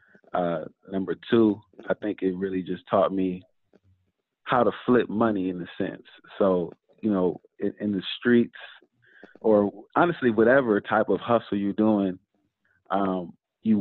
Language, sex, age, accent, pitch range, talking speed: English, male, 30-49, American, 95-110 Hz, 150 wpm